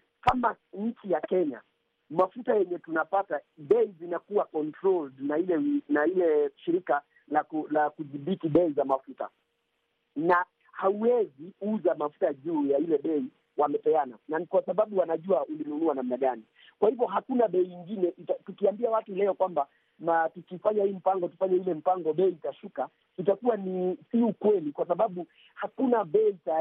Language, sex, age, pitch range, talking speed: Swahili, male, 50-69, 160-220 Hz, 145 wpm